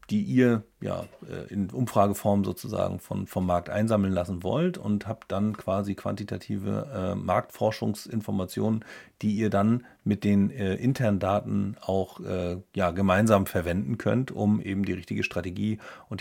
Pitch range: 95-110 Hz